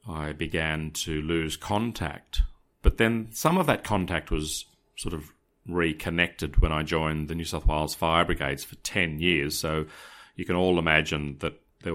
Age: 40-59